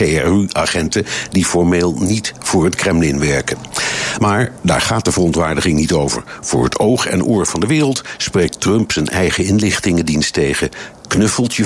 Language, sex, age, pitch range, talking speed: Dutch, male, 60-79, 80-105 Hz, 155 wpm